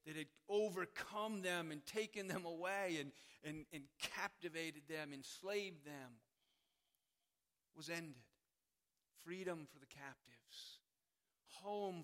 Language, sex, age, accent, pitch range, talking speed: English, male, 40-59, American, 150-200 Hz, 110 wpm